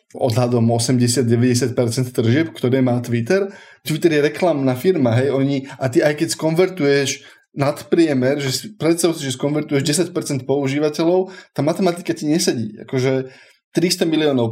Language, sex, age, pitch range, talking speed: Slovak, male, 20-39, 130-160 Hz, 130 wpm